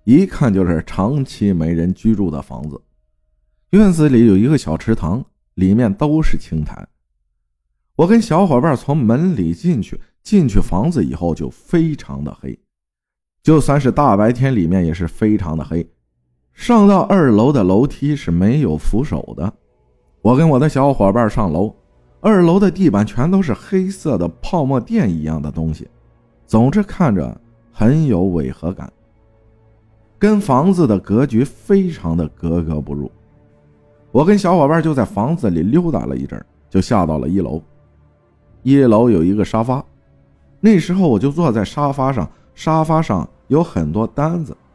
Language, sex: Chinese, male